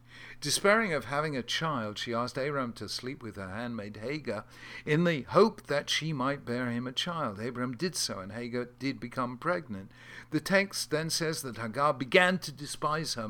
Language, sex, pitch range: English, male, 110-145 Hz